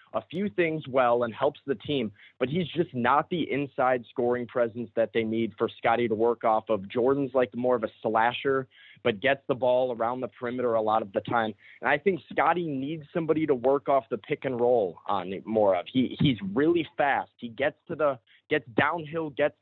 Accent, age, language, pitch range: American, 20-39, English, 125-145 Hz